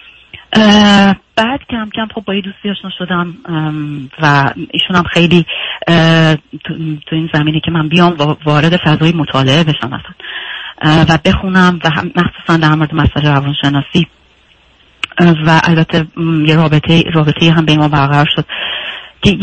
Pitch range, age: 150-180 Hz, 40-59